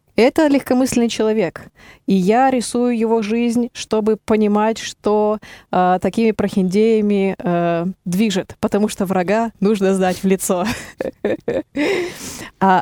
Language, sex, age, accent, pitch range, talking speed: Russian, female, 20-39, native, 180-215 Hz, 110 wpm